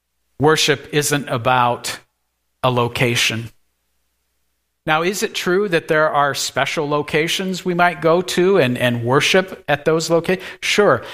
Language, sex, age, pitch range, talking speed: English, male, 50-69, 120-175 Hz, 135 wpm